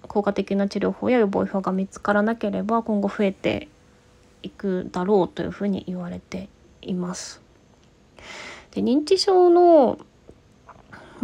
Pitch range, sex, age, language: 195-250 Hz, female, 20-39, Japanese